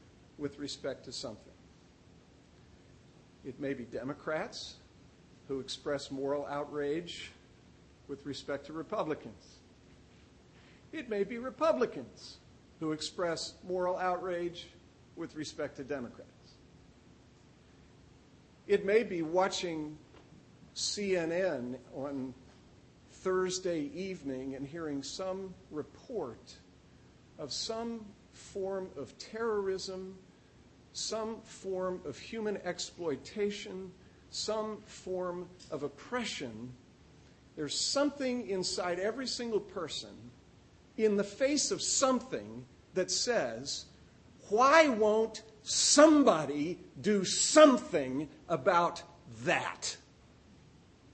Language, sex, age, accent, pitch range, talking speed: English, male, 50-69, American, 145-215 Hz, 85 wpm